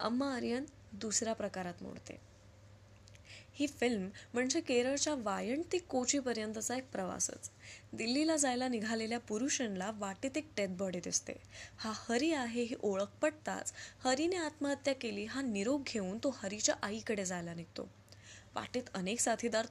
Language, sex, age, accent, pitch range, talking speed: Marathi, female, 10-29, native, 190-255 Hz, 115 wpm